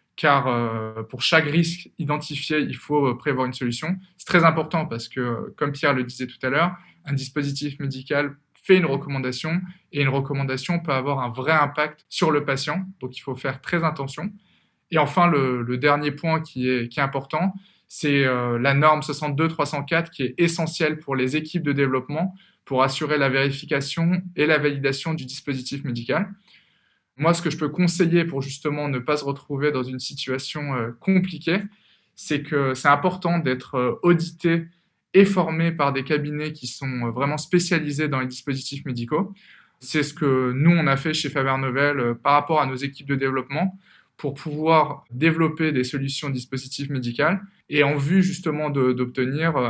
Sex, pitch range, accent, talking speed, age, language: male, 135-165 Hz, French, 175 wpm, 20-39, French